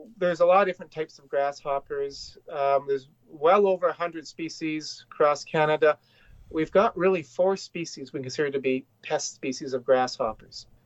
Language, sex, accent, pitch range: English, male, American, 140-185 Hz